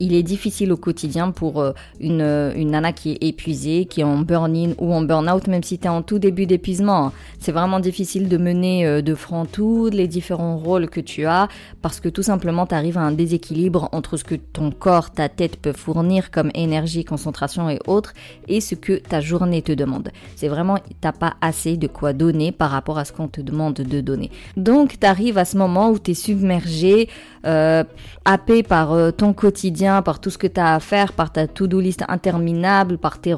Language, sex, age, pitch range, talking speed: French, female, 30-49, 160-190 Hz, 215 wpm